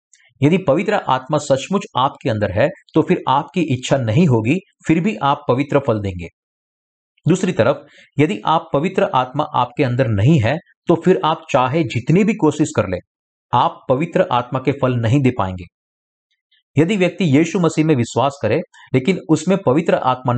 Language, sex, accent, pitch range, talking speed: Hindi, male, native, 125-170 Hz, 170 wpm